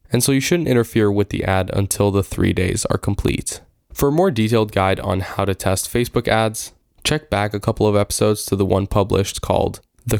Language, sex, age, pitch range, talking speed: English, male, 10-29, 95-120 Hz, 220 wpm